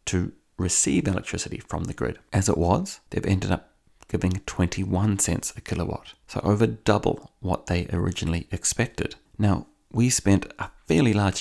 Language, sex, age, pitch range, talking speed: English, male, 30-49, 90-110 Hz, 160 wpm